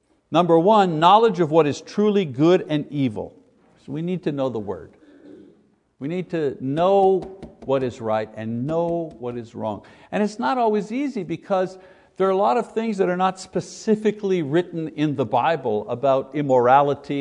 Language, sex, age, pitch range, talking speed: English, male, 60-79, 140-190 Hz, 180 wpm